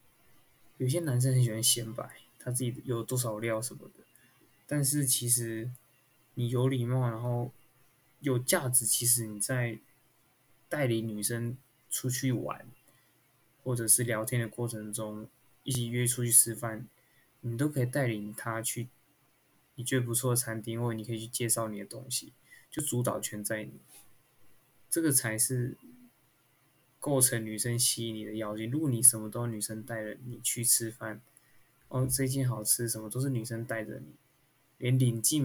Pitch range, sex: 110-130 Hz, male